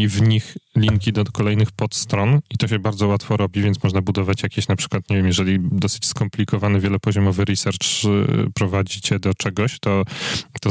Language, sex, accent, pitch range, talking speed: Polish, male, native, 100-120 Hz, 170 wpm